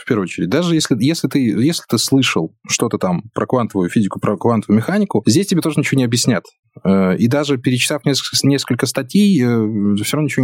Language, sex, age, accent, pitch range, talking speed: Russian, male, 20-39, native, 105-140 Hz, 190 wpm